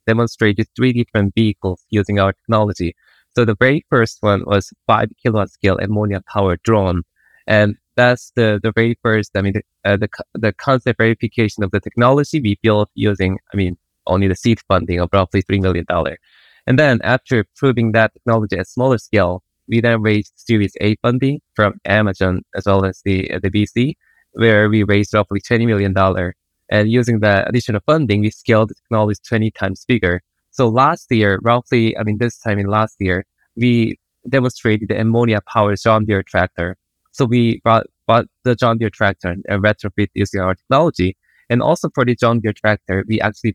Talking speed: 185 wpm